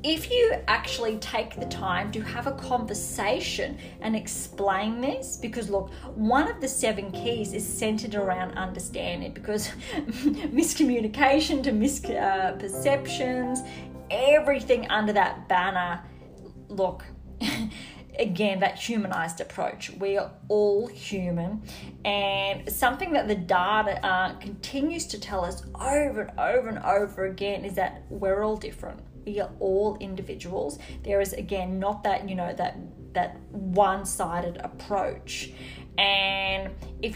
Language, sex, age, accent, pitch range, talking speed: English, female, 20-39, Australian, 195-255 Hz, 130 wpm